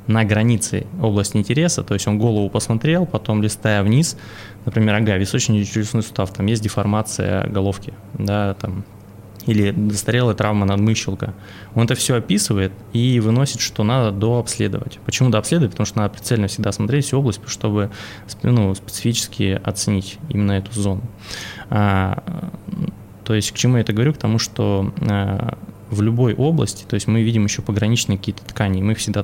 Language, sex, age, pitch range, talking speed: Russian, male, 20-39, 100-120 Hz, 160 wpm